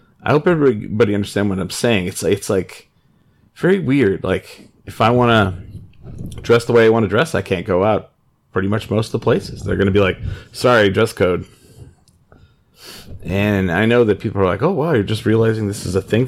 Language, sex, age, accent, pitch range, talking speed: English, male, 30-49, American, 100-120 Hz, 210 wpm